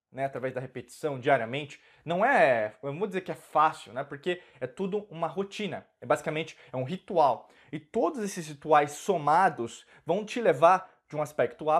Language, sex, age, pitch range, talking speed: Portuguese, male, 20-39, 140-190 Hz, 185 wpm